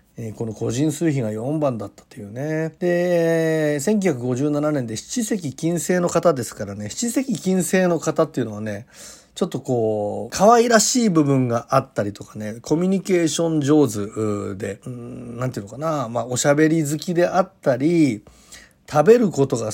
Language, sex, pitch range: Japanese, male, 115-180 Hz